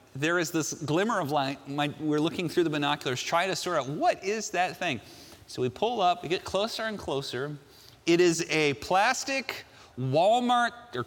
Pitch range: 180-275 Hz